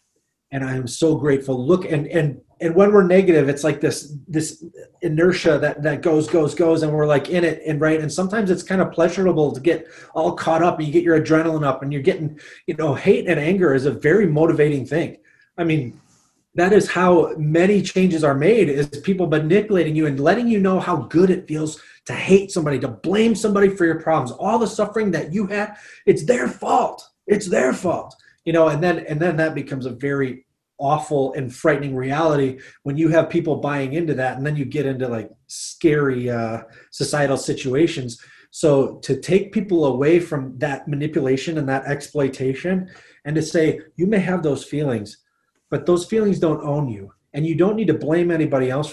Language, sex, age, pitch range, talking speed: English, male, 30-49, 140-175 Hz, 200 wpm